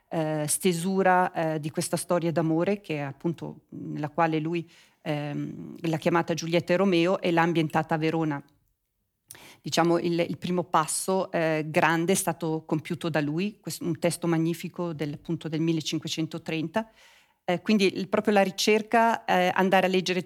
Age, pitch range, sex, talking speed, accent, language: 40-59, 160-190 Hz, female, 150 wpm, native, Italian